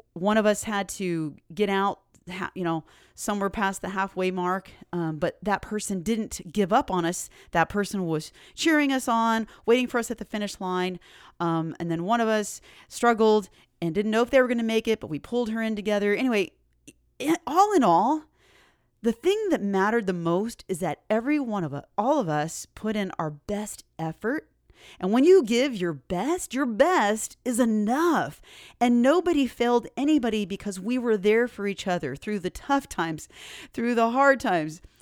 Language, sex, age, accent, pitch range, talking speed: English, female, 30-49, American, 180-235 Hz, 190 wpm